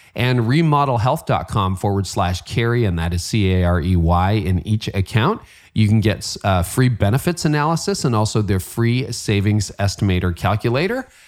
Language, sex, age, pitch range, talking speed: English, male, 40-59, 90-130 Hz, 140 wpm